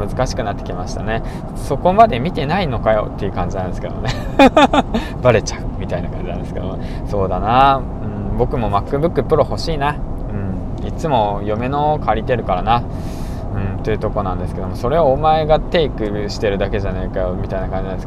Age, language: 20-39, Japanese